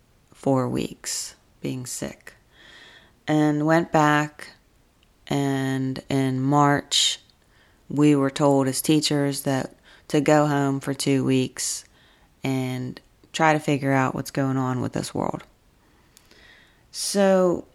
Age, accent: 30-49, American